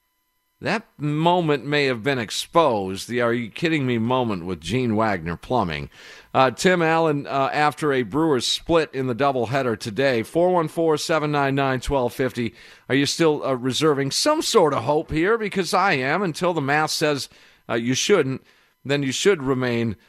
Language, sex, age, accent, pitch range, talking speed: English, male, 50-69, American, 120-165 Hz, 150 wpm